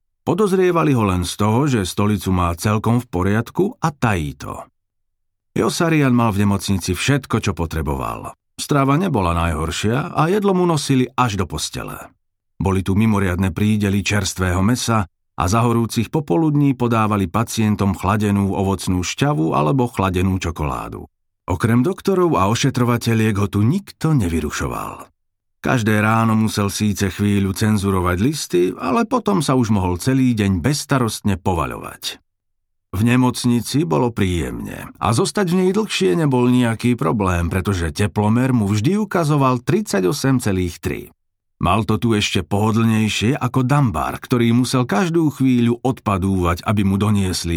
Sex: male